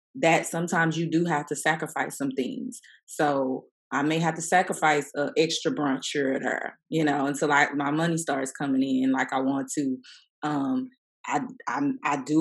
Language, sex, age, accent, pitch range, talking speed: English, female, 20-39, American, 145-180 Hz, 190 wpm